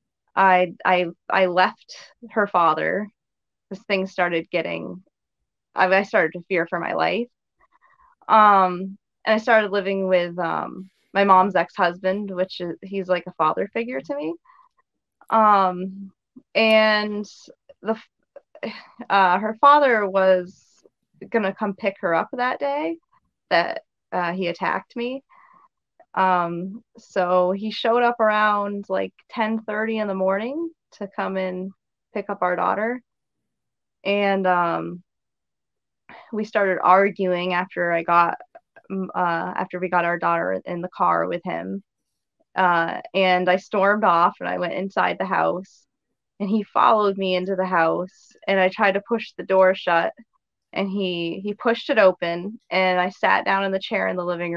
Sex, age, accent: female, 20-39, American